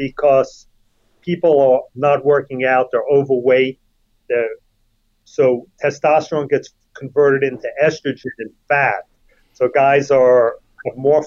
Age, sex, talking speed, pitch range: 40-59, male, 110 wpm, 120-150 Hz